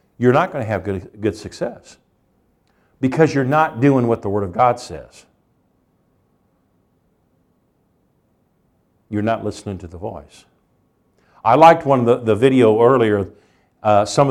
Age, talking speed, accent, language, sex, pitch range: 50-69, 145 wpm, American, English, male, 100-130 Hz